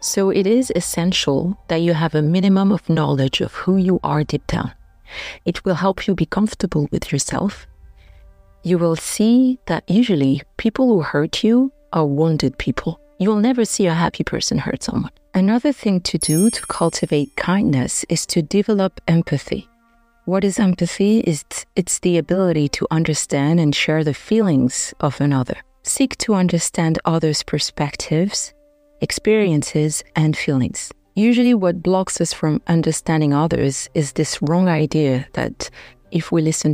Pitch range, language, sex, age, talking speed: 150-195 Hz, English, female, 40-59, 155 wpm